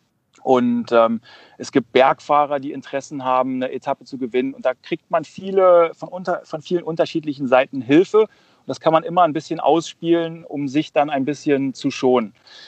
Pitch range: 130-165 Hz